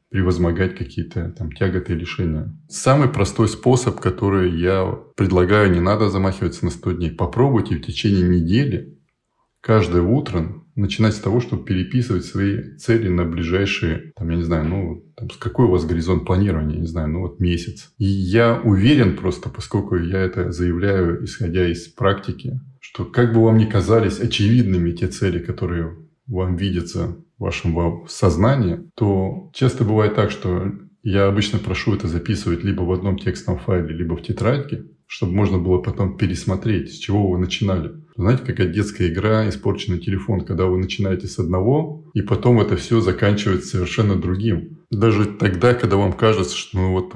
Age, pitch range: 20-39, 90-115 Hz